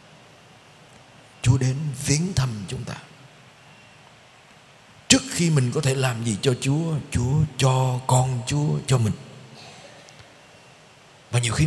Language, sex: Vietnamese, male